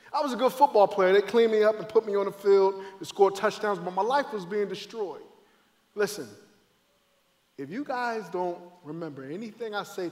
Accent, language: American, English